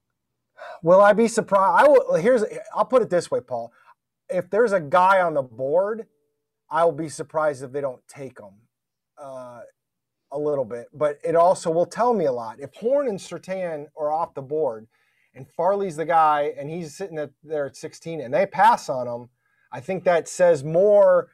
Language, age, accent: English, 30-49, American